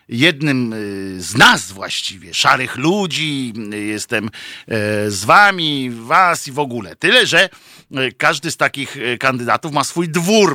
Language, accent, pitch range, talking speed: Polish, native, 110-150 Hz, 125 wpm